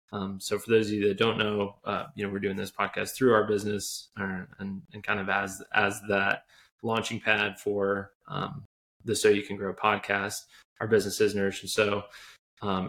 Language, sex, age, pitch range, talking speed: English, male, 20-39, 100-115 Hz, 205 wpm